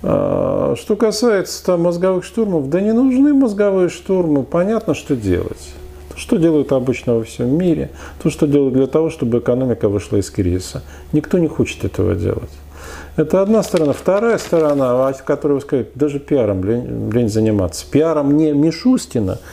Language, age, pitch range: Russian, 40-59, 105-155 Hz